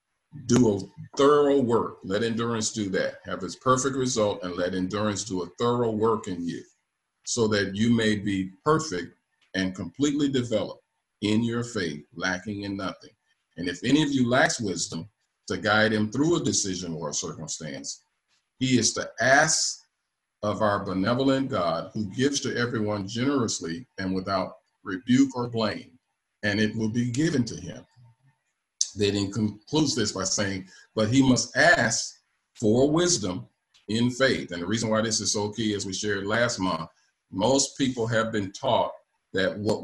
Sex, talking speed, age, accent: male, 165 wpm, 50-69, American